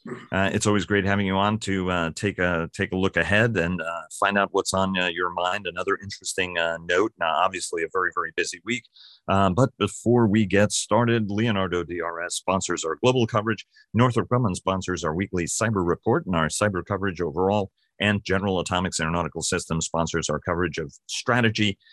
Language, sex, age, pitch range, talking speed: English, male, 40-59, 90-105 Hz, 190 wpm